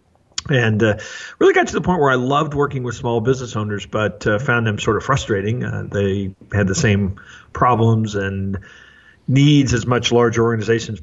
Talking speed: 185 wpm